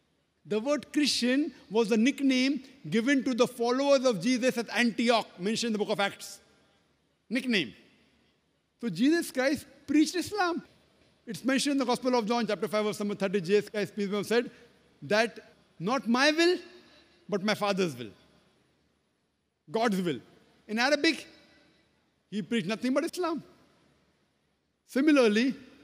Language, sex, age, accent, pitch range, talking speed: English, male, 50-69, Indian, 200-265 Hz, 135 wpm